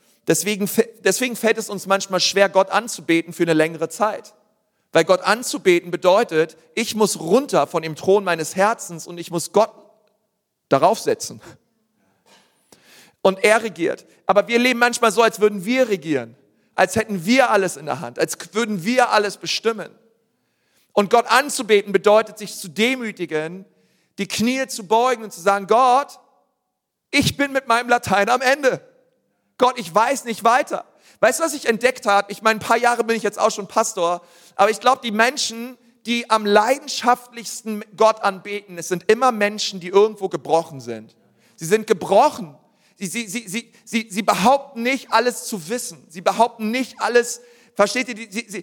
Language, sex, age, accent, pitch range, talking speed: German, male, 40-59, German, 195-235 Hz, 170 wpm